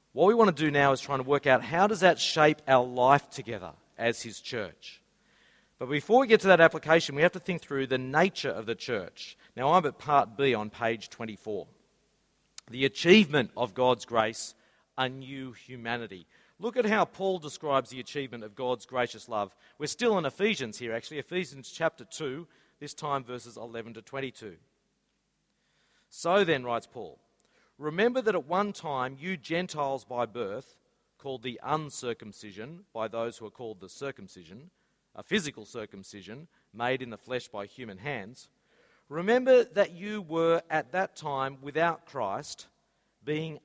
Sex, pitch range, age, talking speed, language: male, 125-170 Hz, 40-59, 170 wpm, English